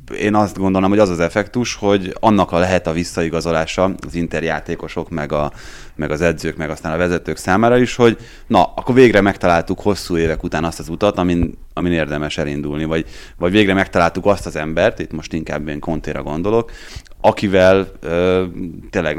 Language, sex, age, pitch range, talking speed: Hungarian, male, 30-49, 75-90 Hz, 180 wpm